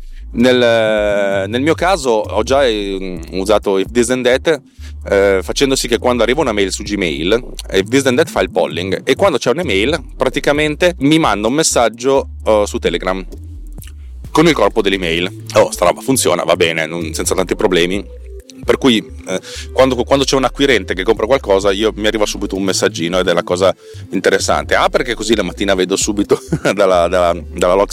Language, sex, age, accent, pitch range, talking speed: Italian, male, 30-49, native, 90-120 Hz, 185 wpm